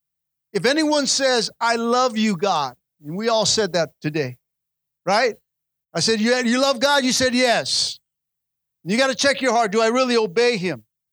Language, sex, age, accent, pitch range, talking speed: English, male, 50-69, American, 150-255 Hz, 185 wpm